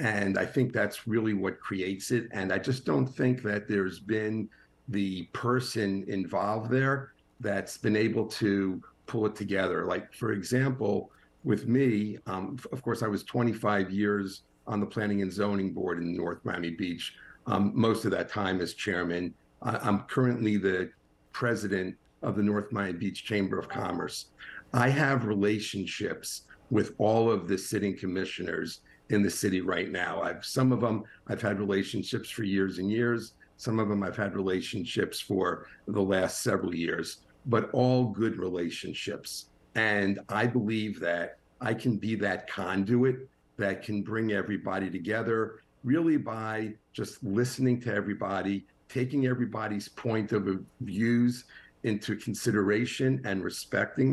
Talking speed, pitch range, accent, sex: 150 wpm, 95-120 Hz, American, male